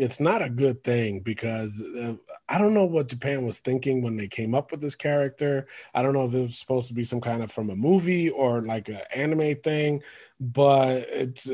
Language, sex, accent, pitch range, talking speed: English, male, American, 125-155 Hz, 220 wpm